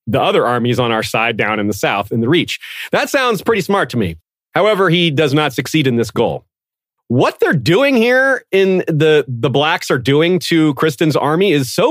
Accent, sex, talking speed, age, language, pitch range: American, male, 210 wpm, 40-59, English, 125-170 Hz